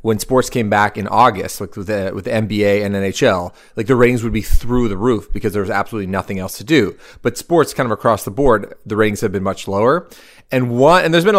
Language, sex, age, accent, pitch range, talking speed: English, male, 30-49, American, 105-130 Hz, 255 wpm